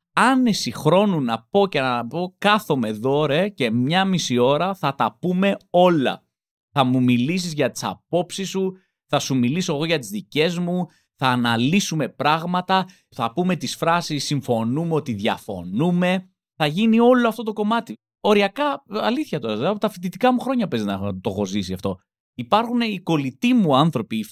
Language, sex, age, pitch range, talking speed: Greek, male, 30-49, 120-180 Hz, 170 wpm